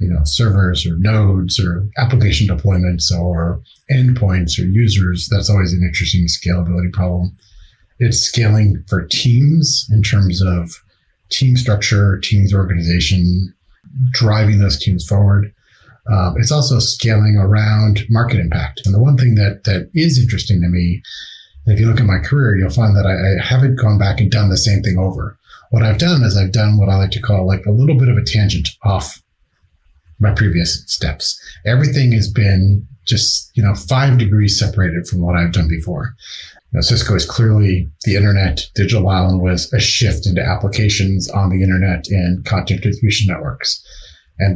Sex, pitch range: male, 90-110 Hz